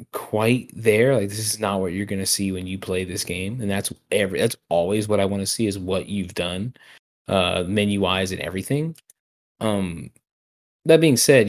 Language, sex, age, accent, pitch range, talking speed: English, male, 20-39, American, 95-115 Hz, 200 wpm